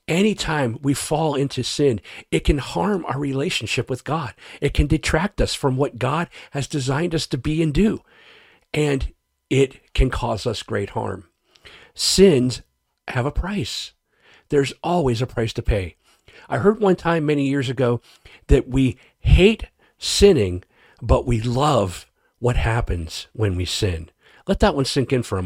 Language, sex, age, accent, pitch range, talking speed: English, male, 40-59, American, 120-165 Hz, 165 wpm